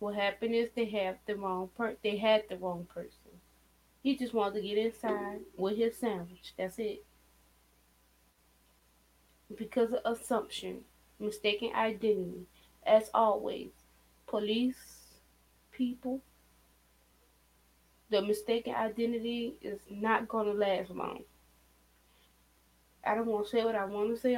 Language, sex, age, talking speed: English, female, 20-39, 120 wpm